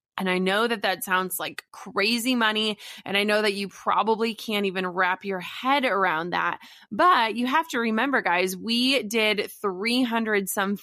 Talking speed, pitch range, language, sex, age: 175 wpm, 190-230 Hz, English, female, 20-39